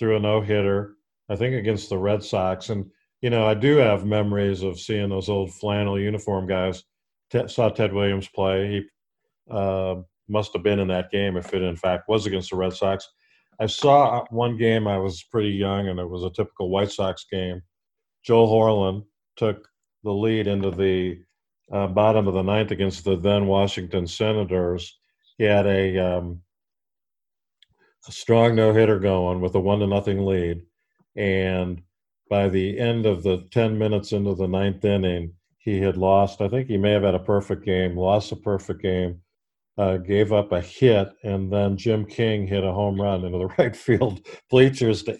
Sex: male